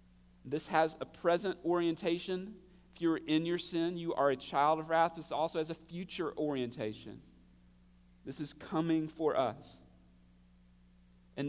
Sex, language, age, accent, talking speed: male, English, 40-59, American, 145 wpm